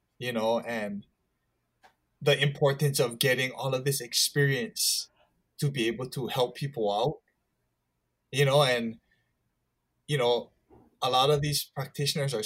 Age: 20-39